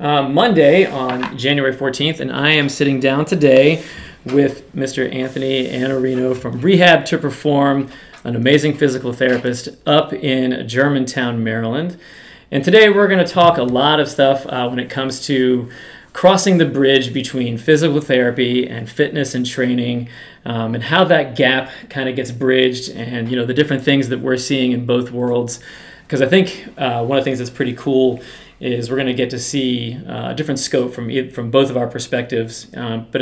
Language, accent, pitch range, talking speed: English, American, 125-140 Hz, 185 wpm